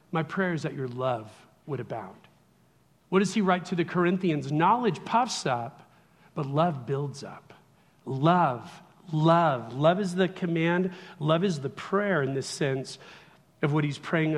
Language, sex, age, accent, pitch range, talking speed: English, male, 40-59, American, 150-195 Hz, 165 wpm